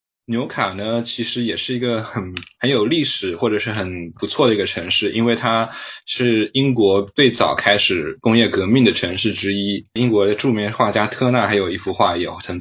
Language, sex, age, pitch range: Chinese, male, 20-39, 100-120 Hz